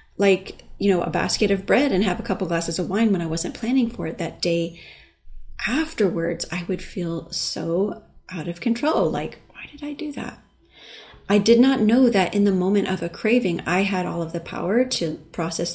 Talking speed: 210 wpm